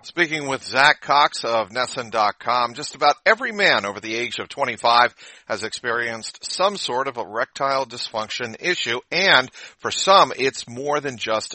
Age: 50-69